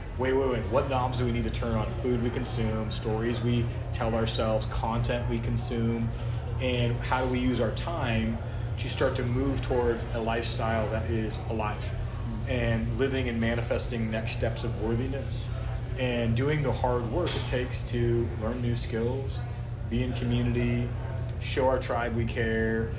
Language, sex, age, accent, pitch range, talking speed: English, male, 30-49, American, 115-125 Hz, 170 wpm